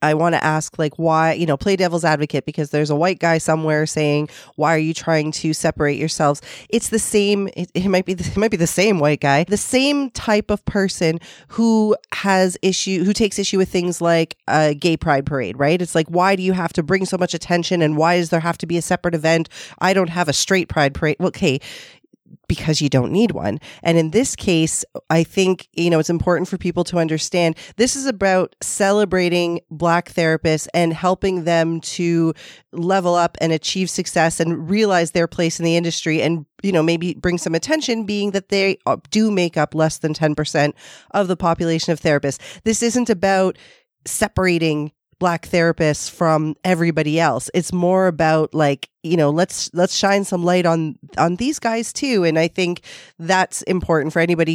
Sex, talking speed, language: female, 200 wpm, English